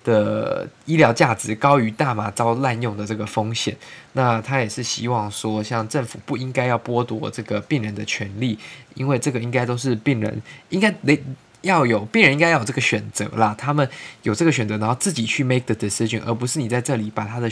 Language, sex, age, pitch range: Chinese, male, 20-39, 110-140 Hz